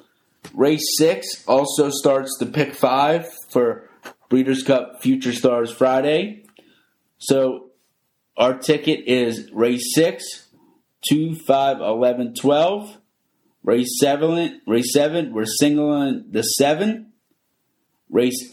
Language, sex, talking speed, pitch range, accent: English, male, 105 wpm, 125-150 Hz, American